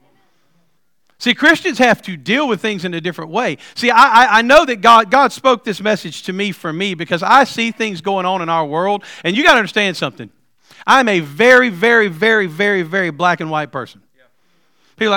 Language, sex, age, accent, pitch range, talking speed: English, male, 40-59, American, 170-225 Hz, 210 wpm